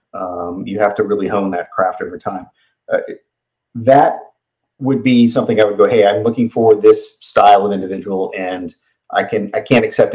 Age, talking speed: 40-59, 190 wpm